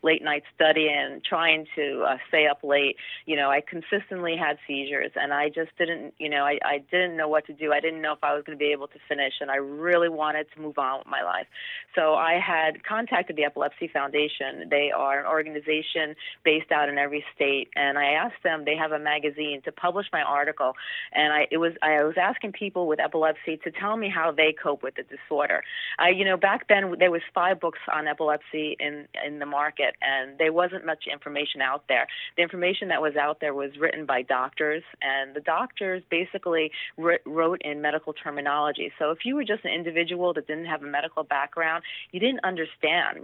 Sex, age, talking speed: female, 30-49, 210 wpm